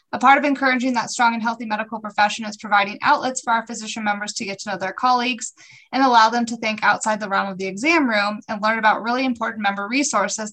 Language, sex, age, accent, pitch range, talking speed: English, female, 20-39, American, 200-240 Hz, 240 wpm